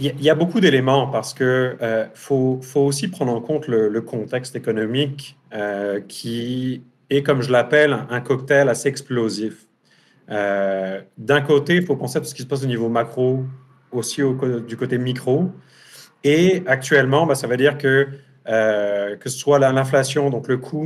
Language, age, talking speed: French, 30-49, 180 wpm